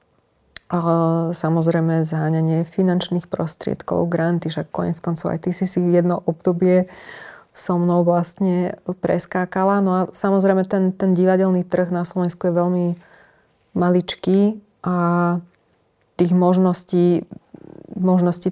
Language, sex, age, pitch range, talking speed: Slovak, female, 20-39, 165-185 Hz, 115 wpm